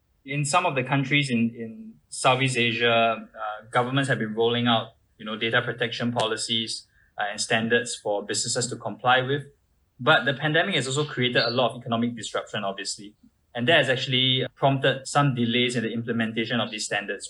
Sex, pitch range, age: male, 110-125 Hz, 20-39